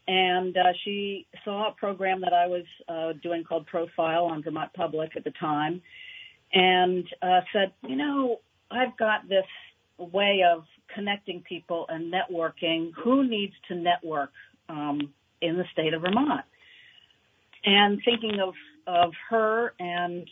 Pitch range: 170-205 Hz